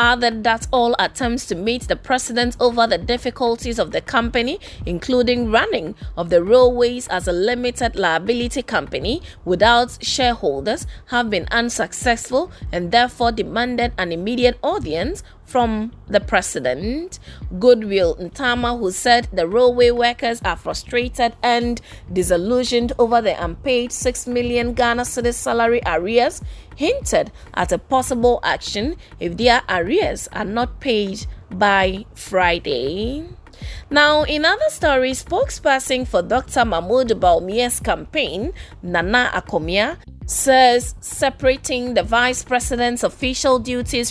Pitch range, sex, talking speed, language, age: 230-250 Hz, female, 120 wpm, English, 20-39